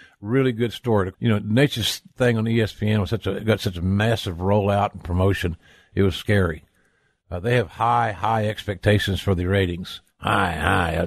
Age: 50-69